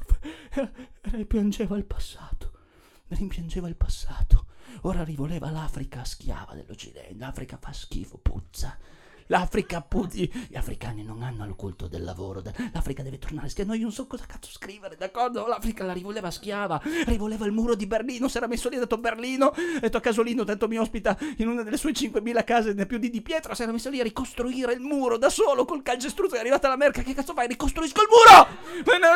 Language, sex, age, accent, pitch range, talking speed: Italian, male, 40-59, native, 185-275 Hz, 195 wpm